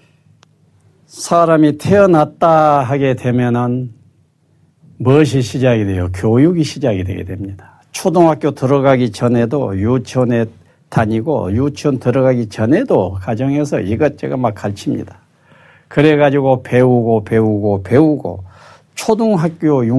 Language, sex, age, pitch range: Korean, male, 60-79, 115-165 Hz